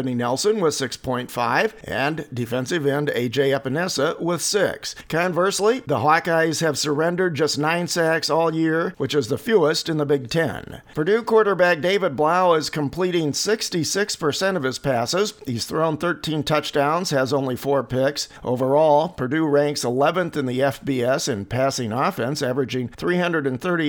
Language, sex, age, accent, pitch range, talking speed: English, male, 50-69, American, 140-175 Hz, 145 wpm